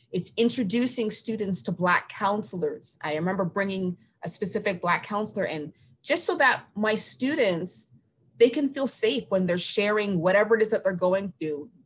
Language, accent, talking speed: English, American, 165 wpm